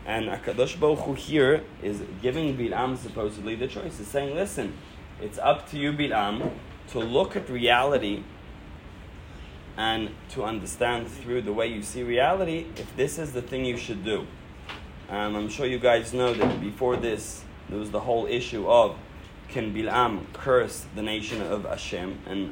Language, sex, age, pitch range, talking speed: English, male, 20-39, 105-145 Hz, 170 wpm